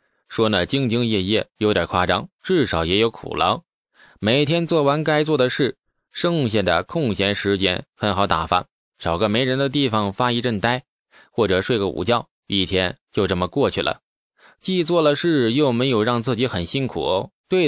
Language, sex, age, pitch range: Chinese, male, 20-39, 95-135 Hz